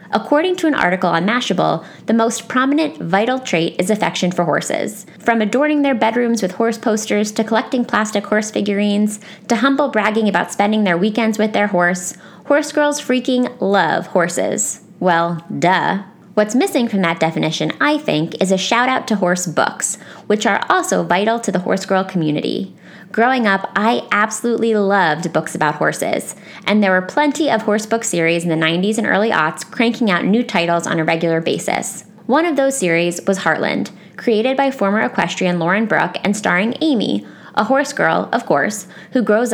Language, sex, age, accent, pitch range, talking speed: English, female, 20-39, American, 180-235 Hz, 180 wpm